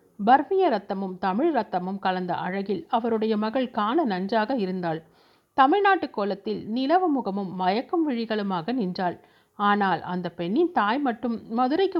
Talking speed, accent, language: 120 wpm, native, Tamil